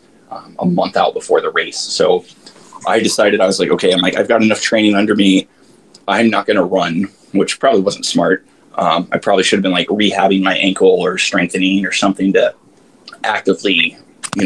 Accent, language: American, English